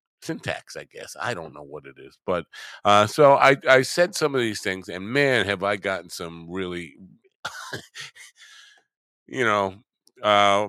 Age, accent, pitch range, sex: 50-69, American, 95-130 Hz, male